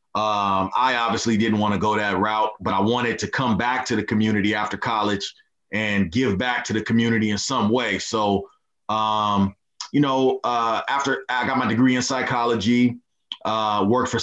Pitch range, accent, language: 105-125 Hz, American, English